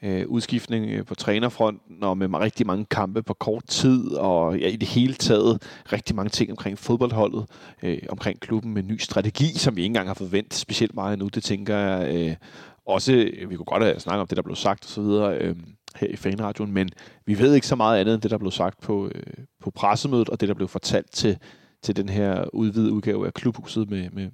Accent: native